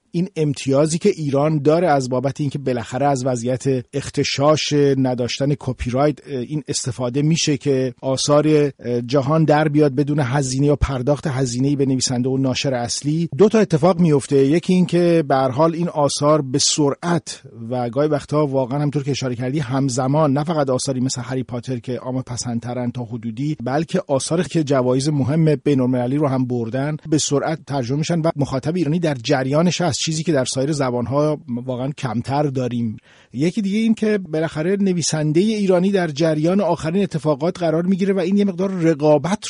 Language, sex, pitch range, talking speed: Persian, male, 130-160 Hz, 170 wpm